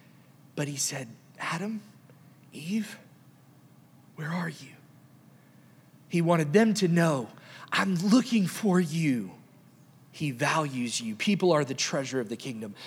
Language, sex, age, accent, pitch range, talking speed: English, male, 30-49, American, 130-165 Hz, 125 wpm